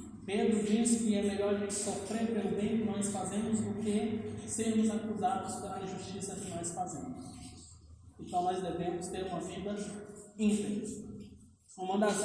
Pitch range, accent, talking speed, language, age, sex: 200-235 Hz, Brazilian, 150 wpm, Portuguese, 20-39, male